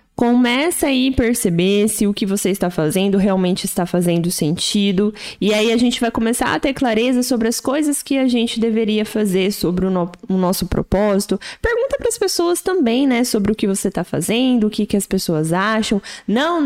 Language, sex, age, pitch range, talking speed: Portuguese, female, 20-39, 190-245 Hz, 200 wpm